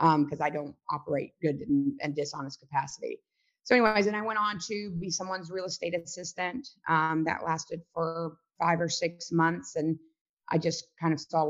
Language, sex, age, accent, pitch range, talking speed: English, female, 30-49, American, 155-180 Hz, 200 wpm